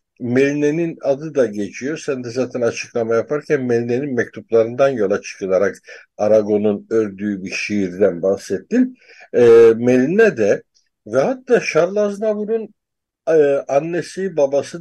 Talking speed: 110 wpm